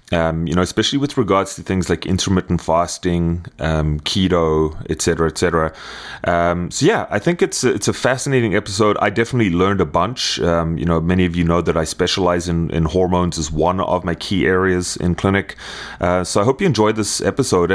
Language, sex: English, male